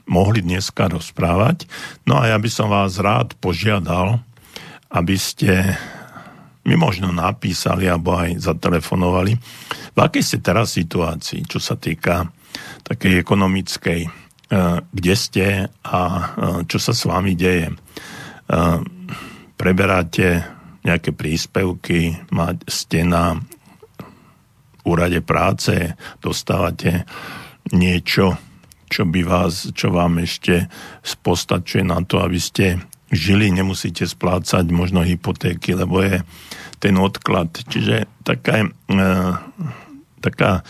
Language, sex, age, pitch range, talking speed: Slovak, male, 50-69, 85-100 Hz, 105 wpm